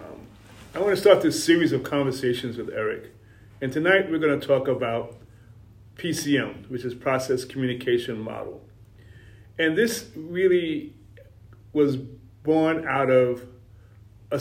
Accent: American